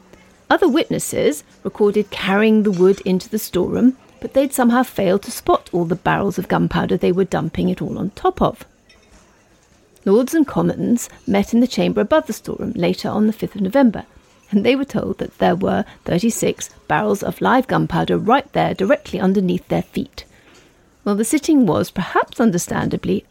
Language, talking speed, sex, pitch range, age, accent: English, 175 wpm, female, 190-255 Hz, 40-59, British